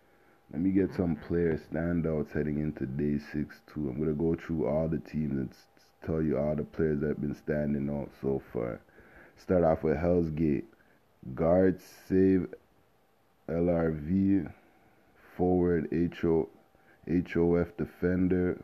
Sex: male